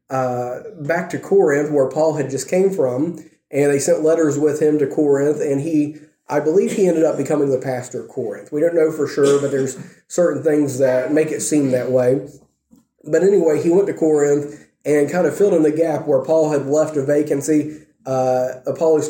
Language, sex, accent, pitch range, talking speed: English, male, American, 140-160 Hz, 205 wpm